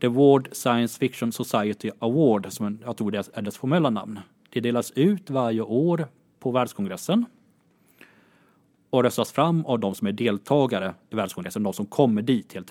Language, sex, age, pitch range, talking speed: Swedish, male, 30-49, 110-135 Hz, 170 wpm